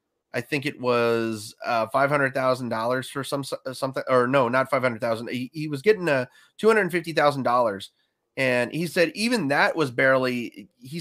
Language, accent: English, American